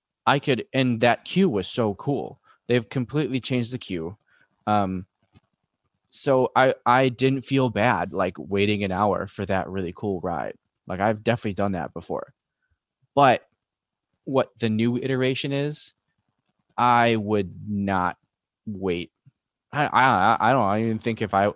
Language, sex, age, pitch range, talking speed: English, male, 20-39, 100-130 Hz, 155 wpm